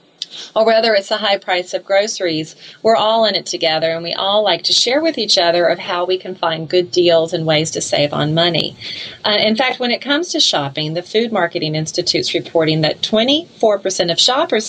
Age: 30-49